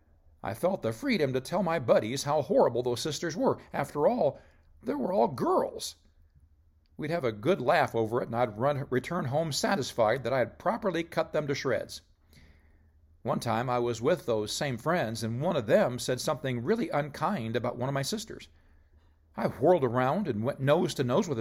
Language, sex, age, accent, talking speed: English, male, 50-69, American, 195 wpm